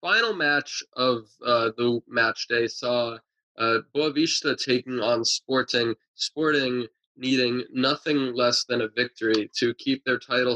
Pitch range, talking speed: 120-140 Hz, 135 wpm